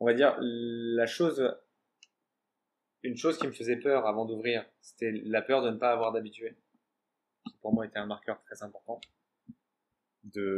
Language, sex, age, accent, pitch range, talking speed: French, male, 20-39, French, 100-120 Hz, 165 wpm